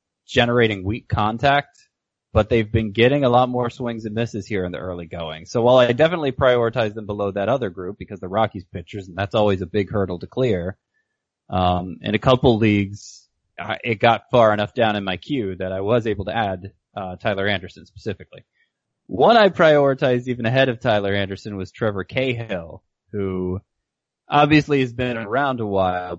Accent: American